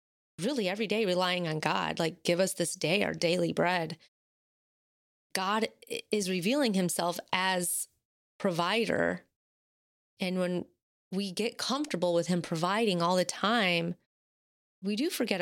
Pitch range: 170-210 Hz